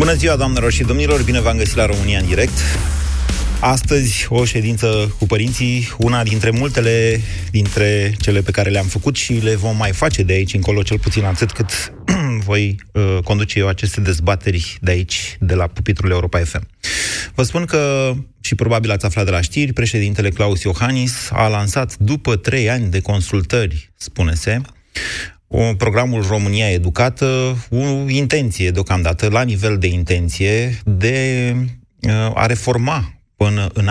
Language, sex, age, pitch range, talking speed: Romanian, male, 30-49, 95-115 Hz, 150 wpm